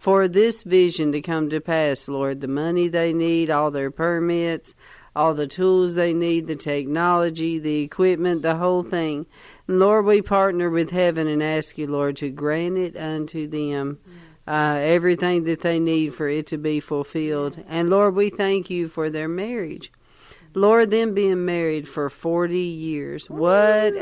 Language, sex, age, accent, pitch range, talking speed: English, female, 50-69, American, 150-180 Hz, 165 wpm